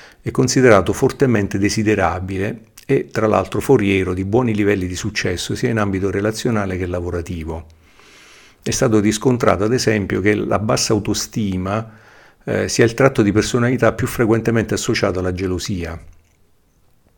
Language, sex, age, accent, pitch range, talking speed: Italian, male, 50-69, native, 95-115 Hz, 135 wpm